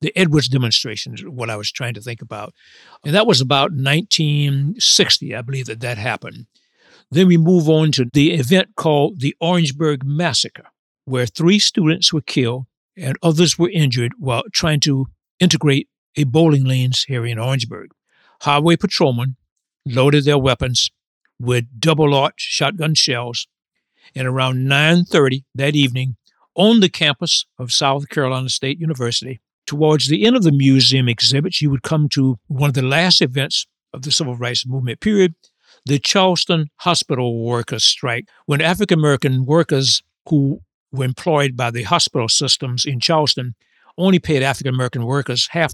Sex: male